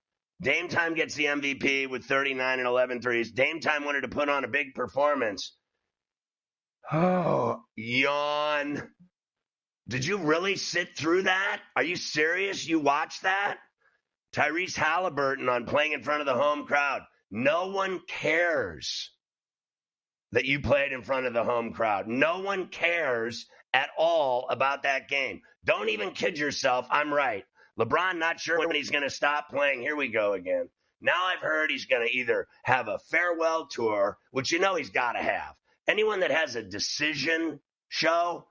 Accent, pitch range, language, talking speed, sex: American, 135-180 Hz, English, 165 wpm, male